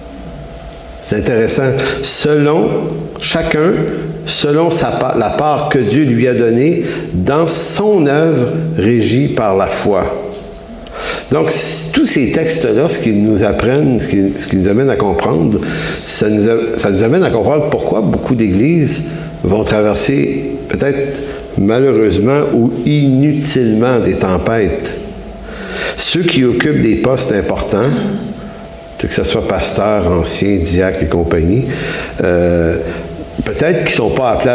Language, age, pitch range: English, 60-79, 95-140 Hz